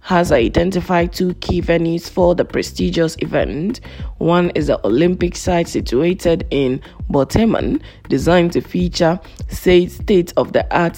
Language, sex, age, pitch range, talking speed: English, female, 20-39, 150-180 Hz, 115 wpm